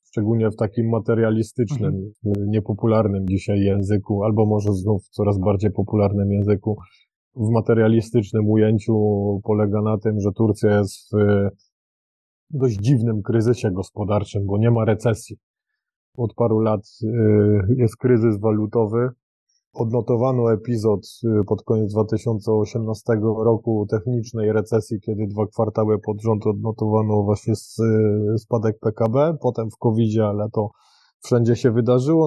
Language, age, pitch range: Polish, 20-39, 105-120 Hz